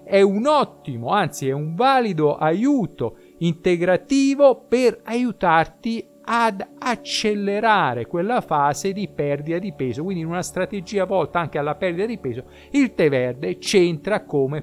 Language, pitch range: Italian, 140-225 Hz